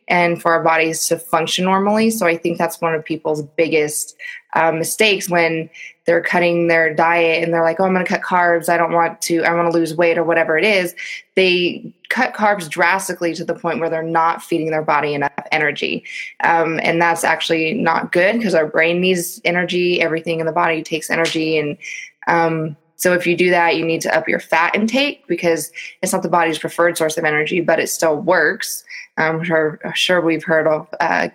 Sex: female